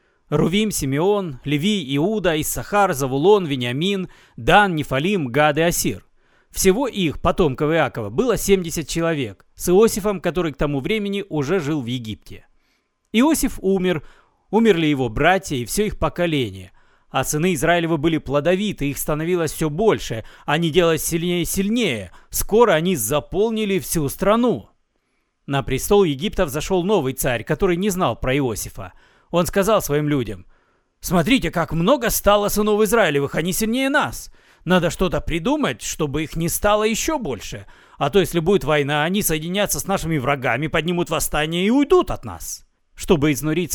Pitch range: 145-200 Hz